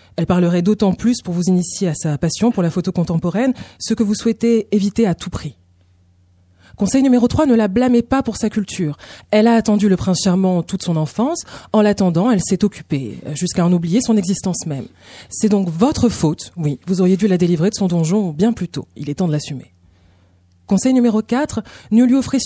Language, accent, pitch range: French, French, 175-230 Hz